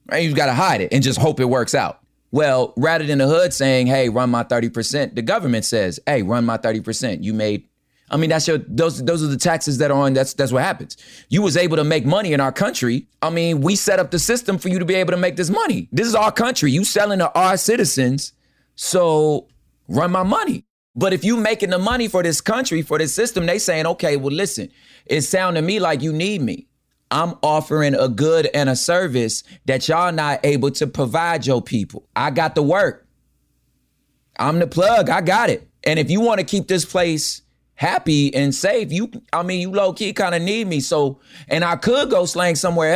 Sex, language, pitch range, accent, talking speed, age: male, English, 135-185 Hz, American, 230 wpm, 30-49